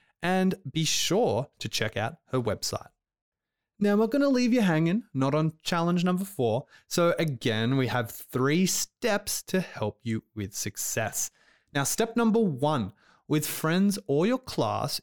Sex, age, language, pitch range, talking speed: male, 20-39, English, 125-200 Hz, 160 wpm